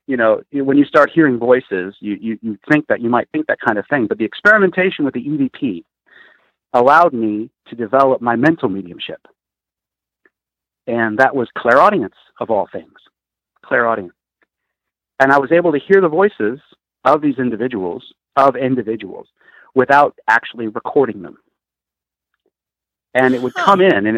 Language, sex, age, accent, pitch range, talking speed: English, male, 50-69, American, 110-150 Hz, 155 wpm